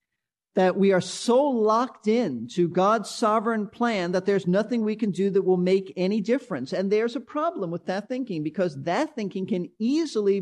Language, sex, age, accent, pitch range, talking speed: English, male, 50-69, American, 175-235 Hz, 205 wpm